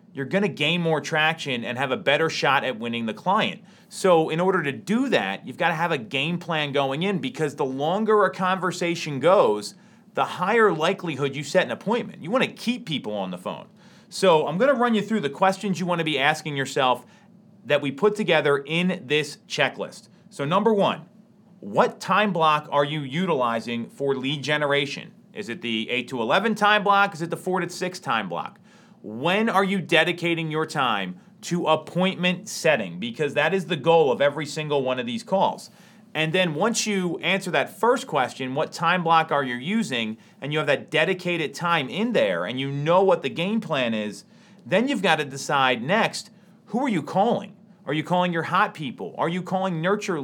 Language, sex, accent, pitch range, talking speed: English, male, American, 150-200 Hz, 200 wpm